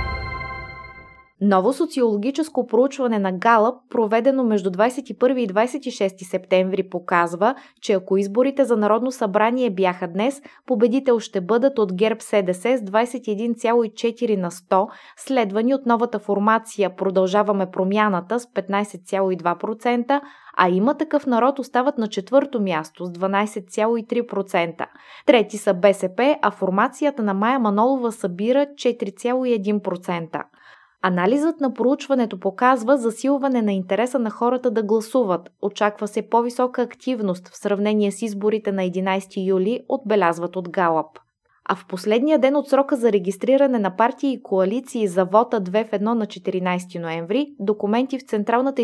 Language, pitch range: Bulgarian, 195-245 Hz